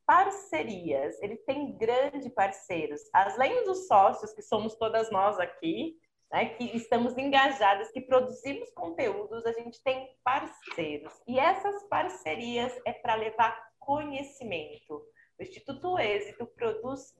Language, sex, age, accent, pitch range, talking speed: Portuguese, female, 30-49, Brazilian, 205-290 Hz, 120 wpm